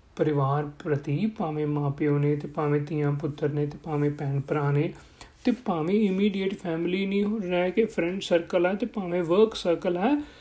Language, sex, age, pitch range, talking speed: Punjabi, male, 40-59, 160-230 Hz, 180 wpm